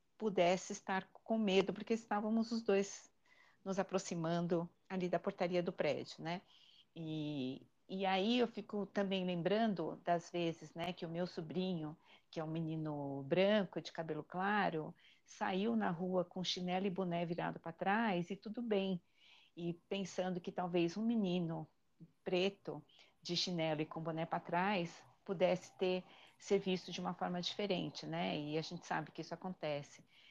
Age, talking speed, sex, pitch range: 50-69, 160 wpm, female, 165-195 Hz